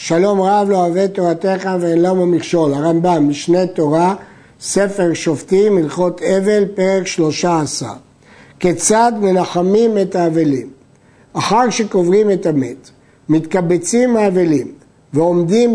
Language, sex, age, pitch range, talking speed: Hebrew, male, 60-79, 165-215 Hz, 115 wpm